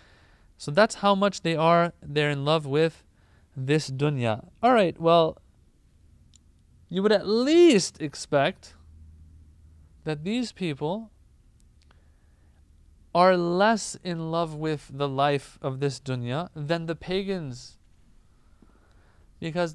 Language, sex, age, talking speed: English, male, 30-49, 110 wpm